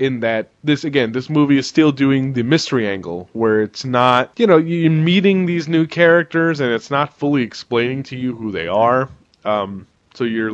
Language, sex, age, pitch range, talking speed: English, male, 20-39, 110-145 Hz, 200 wpm